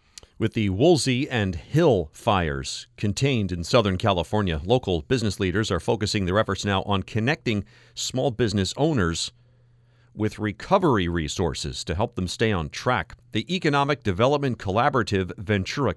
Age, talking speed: 40-59, 140 wpm